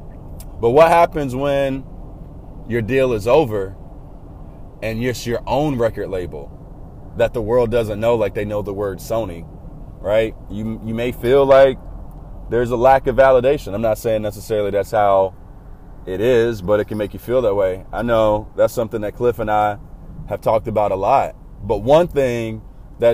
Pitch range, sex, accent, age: 105-140 Hz, male, American, 30-49